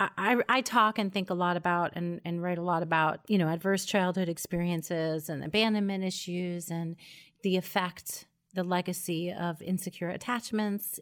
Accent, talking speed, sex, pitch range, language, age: American, 165 wpm, female, 170-200 Hz, English, 30-49